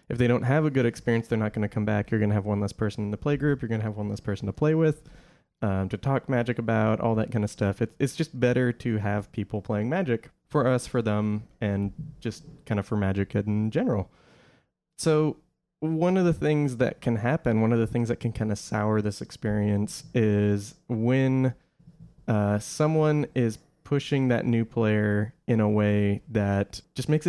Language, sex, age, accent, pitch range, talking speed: English, male, 20-39, American, 105-130 Hz, 220 wpm